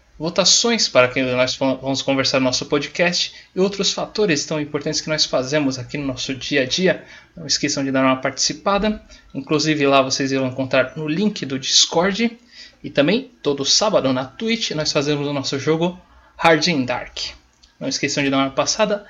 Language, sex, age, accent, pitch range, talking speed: Portuguese, male, 20-39, Brazilian, 130-175 Hz, 180 wpm